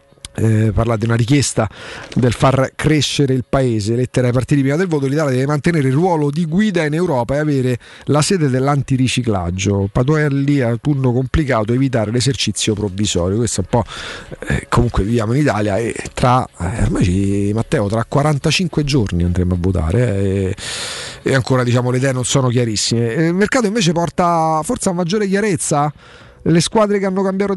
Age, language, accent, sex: 40-59, Italian, native, male